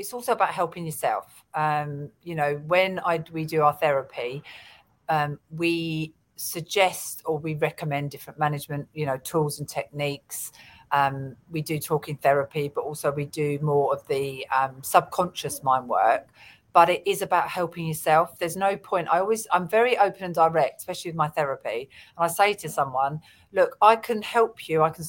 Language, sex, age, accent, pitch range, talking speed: English, female, 40-59, British, 150-190 Hz, 180 wpm